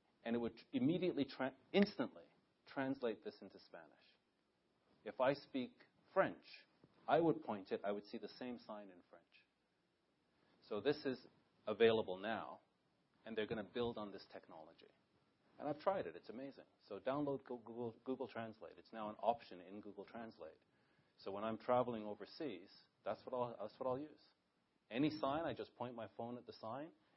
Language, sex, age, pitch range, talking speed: English, male, 40-59, 105-140 Hz, 175 wpm